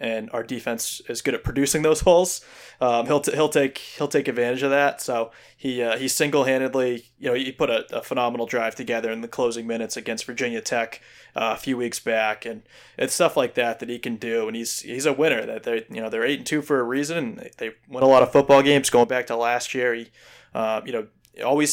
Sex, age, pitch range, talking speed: male, 20-39, 115-135 Hz, 245 wpm